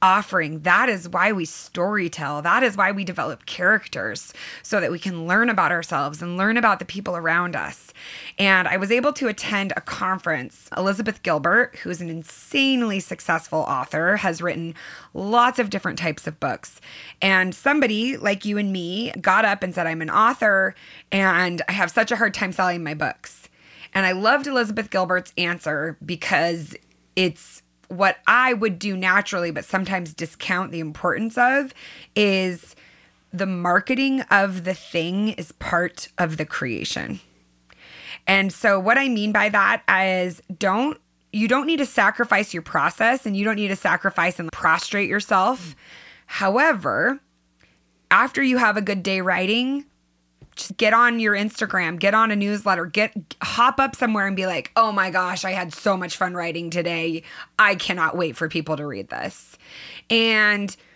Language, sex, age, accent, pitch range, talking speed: English, female, 20-39, American, 175-220 Hz, 170 wpm